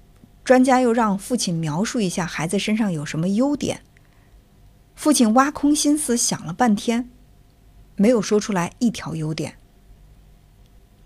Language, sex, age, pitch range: Chinese, female, 50-69, 170-235 Hz